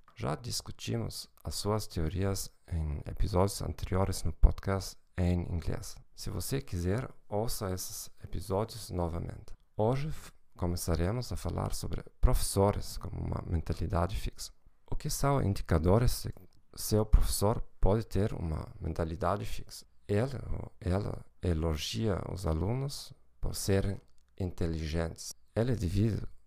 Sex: male